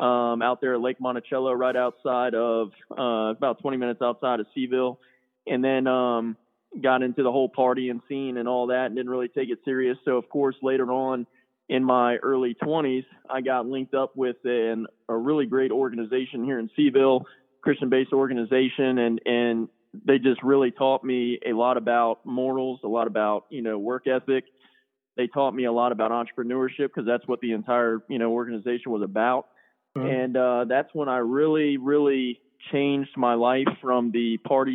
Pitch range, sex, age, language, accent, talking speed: 120-135 Hz, male, 20-39, English, American, 180 wpm